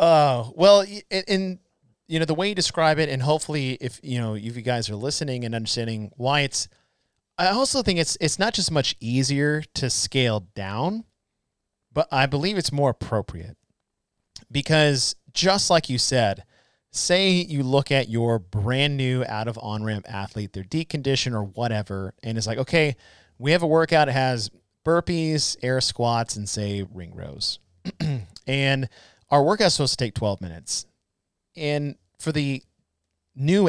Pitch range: 110-155 Hz